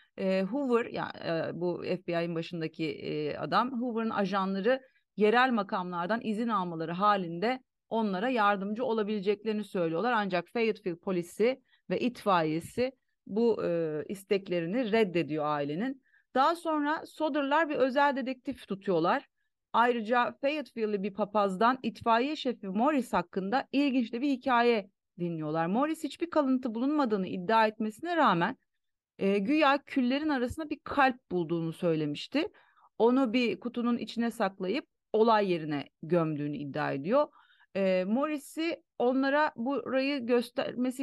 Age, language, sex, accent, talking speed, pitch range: 30-49, Turkish, female, native, 110 wpm, 185-260 Hz